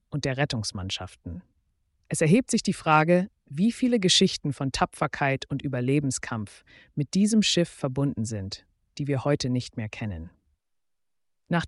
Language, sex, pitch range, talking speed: German, female, 120-160 Hz, 140 wpm